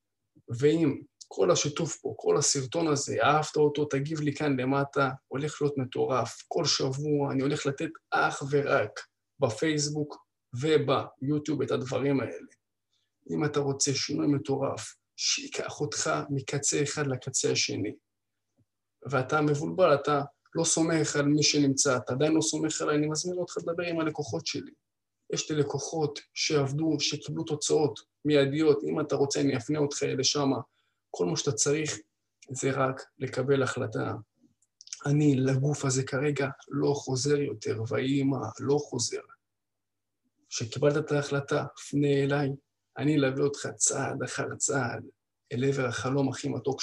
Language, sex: Hebrew, male